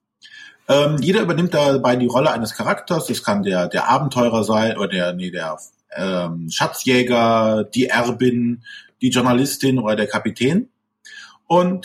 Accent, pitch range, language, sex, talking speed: German, 120-170 Hz, German, male, 140 wpm